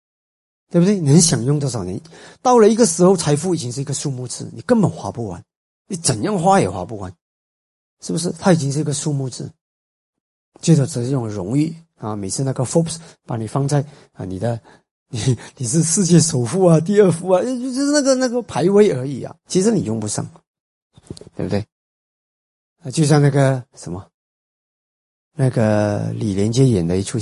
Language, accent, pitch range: Chinese, native, 110-165 Hz